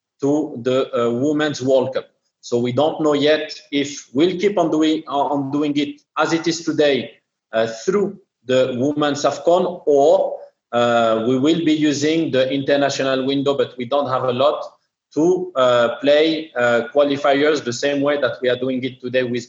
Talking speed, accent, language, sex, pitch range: 180 wpm, French, English, male, 120-145 Hz